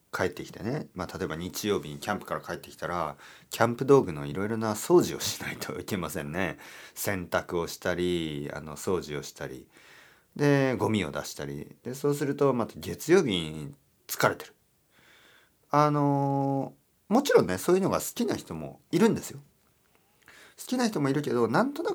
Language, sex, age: Japanese, male, 40-59